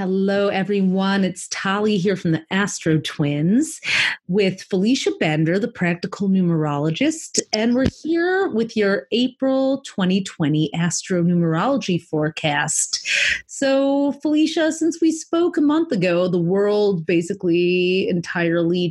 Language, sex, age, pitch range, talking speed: English, female, 30-49, 170-225 Hz, 115 wpm